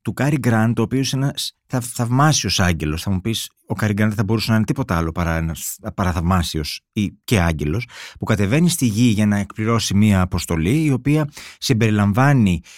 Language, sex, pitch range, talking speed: Greek, male, 95-130 Hz, 175 wpm